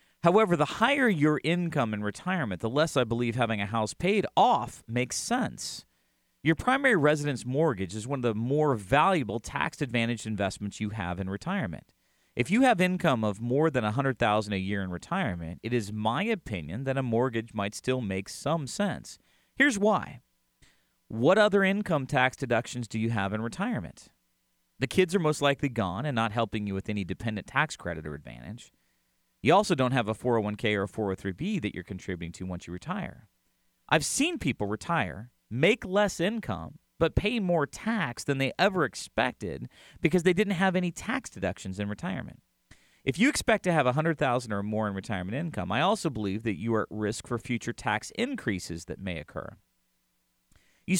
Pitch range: 105-165 Hz